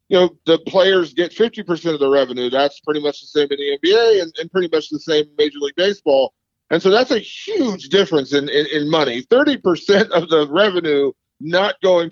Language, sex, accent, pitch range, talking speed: English, male, American, 145-190 Hz, 210 wpm